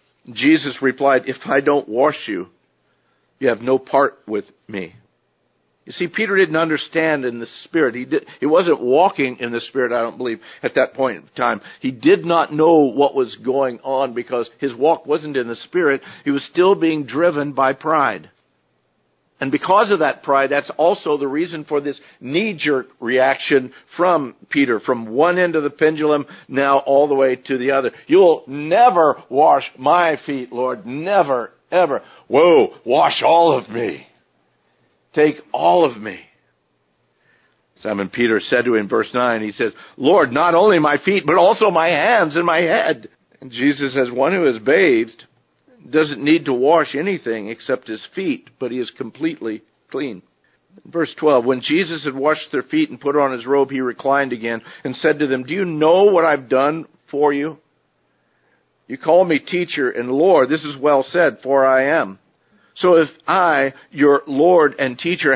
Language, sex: English, male